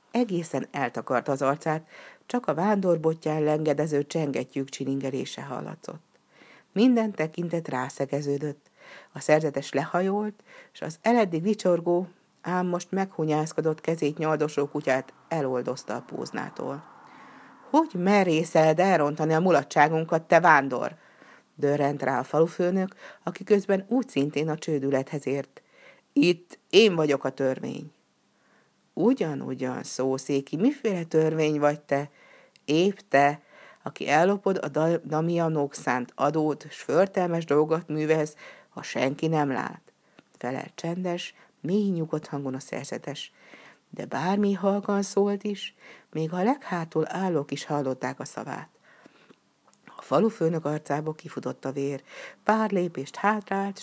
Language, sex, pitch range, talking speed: Hungarian, female, 145-185 Hz, 120 wpm